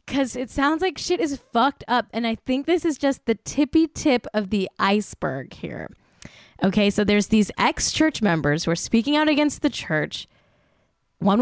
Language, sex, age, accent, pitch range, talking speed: English, female, 10-29, American, 195-255 Hz, 185 wpm